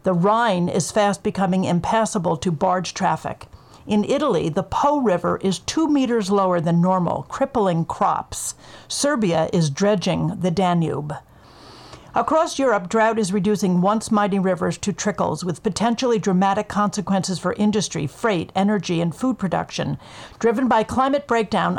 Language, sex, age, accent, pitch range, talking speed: English, female, 50-69, American, 180-220 Hz, 145 wpm